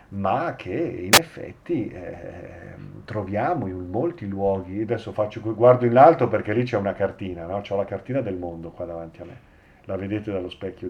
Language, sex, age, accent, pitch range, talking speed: Italian, male, 40-59, native, 100-120 Hz, 185 wpm